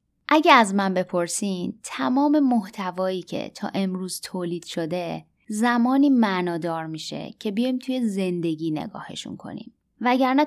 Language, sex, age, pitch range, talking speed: Persian, female, 20-39, 175-225 Hz, 120 wpm